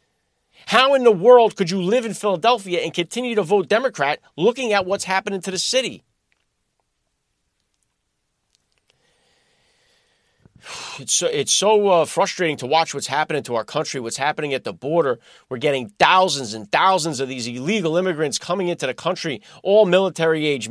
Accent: American